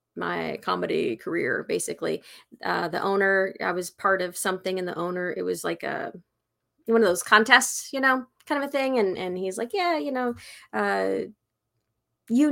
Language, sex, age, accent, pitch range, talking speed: English, female, 30-49, American, 180-235 Hz, 180 wpm